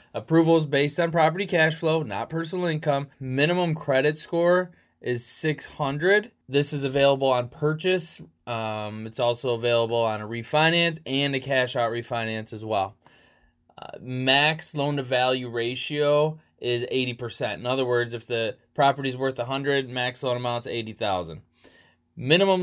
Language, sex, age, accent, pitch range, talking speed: English, male, 20-39, American, 120-150 Hz, 150 wpm